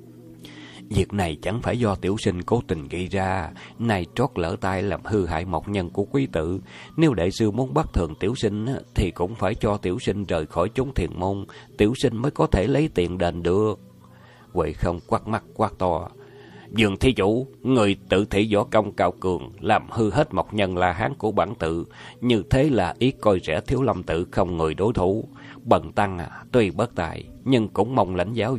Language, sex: Vietnamese, male